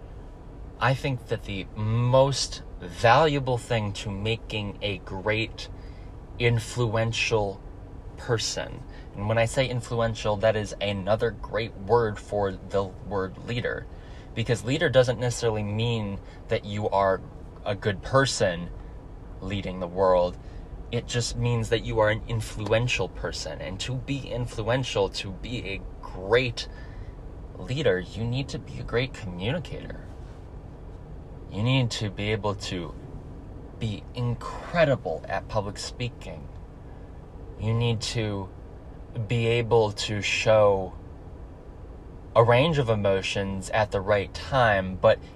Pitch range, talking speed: 90-115 Hz, 125 wpm